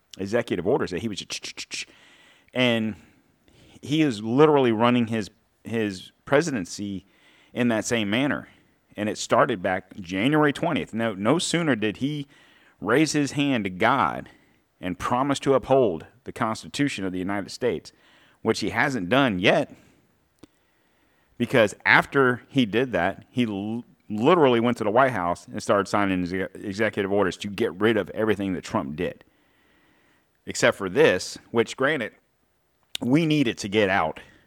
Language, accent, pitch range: English, American, 100-120 Hz